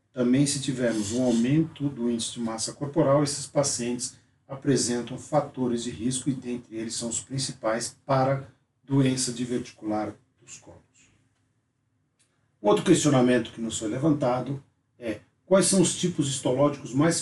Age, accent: 50-69, Brazilian